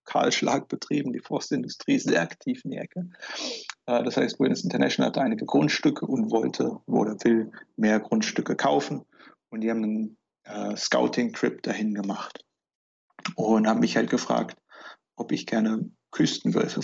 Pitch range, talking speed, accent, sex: 105-150 Hz, 145 wpm, German, male